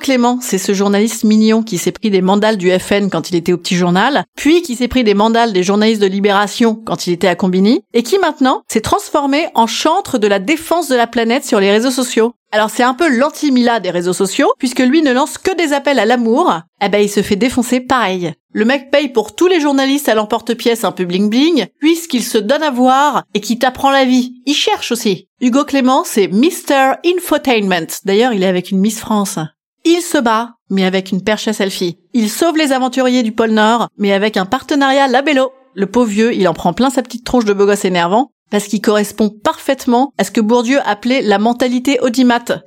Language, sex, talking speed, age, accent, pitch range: French, female, 225 wpm, 30-49, French, 200-265 Hz